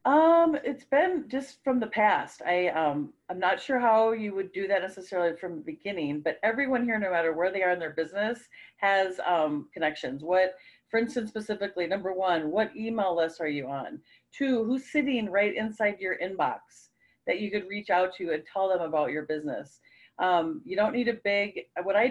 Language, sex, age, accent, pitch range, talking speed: English, female, 40-59, American, 175-220 Hz, 200 wpm